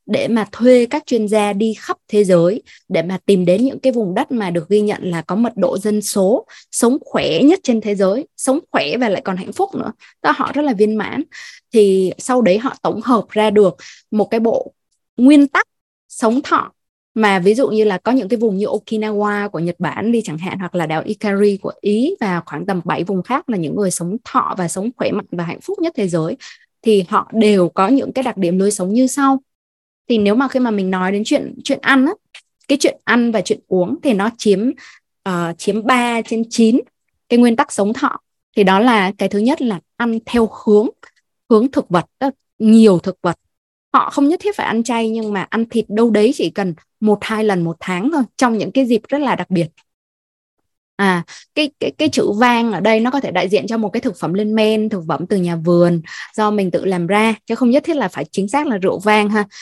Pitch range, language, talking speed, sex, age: 195-255 Hz, Vietnamese, 240 wpm, female, 20-39